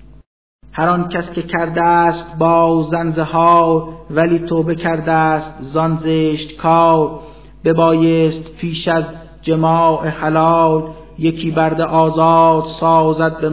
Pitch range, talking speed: 160-165 Hz, 100 wpm